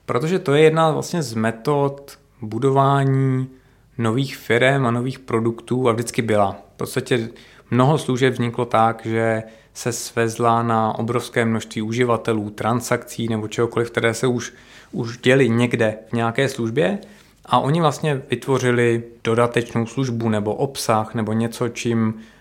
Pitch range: 115-130 Hz